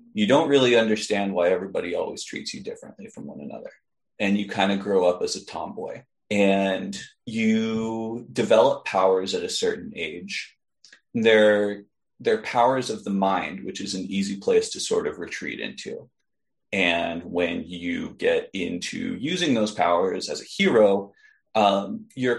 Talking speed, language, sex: 160 wpm, English, male